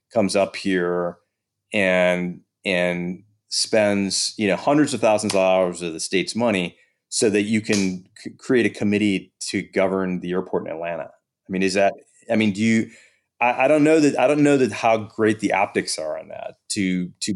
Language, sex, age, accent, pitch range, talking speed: English, male, 30-49, American, 90-115 Hz, 195 wpm